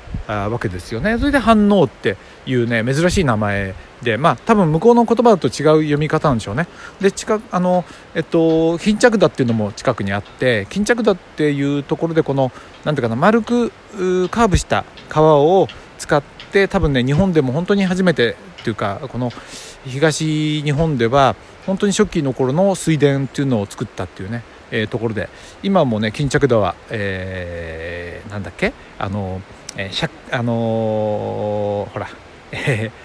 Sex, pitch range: male, 115-165 Hz